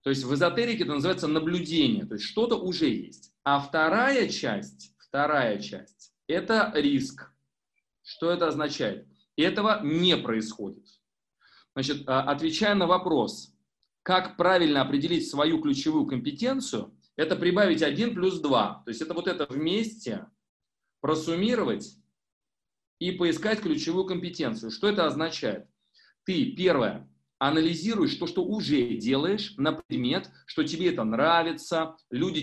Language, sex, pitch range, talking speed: Russian, male, 140-205 Hz, 125 wpm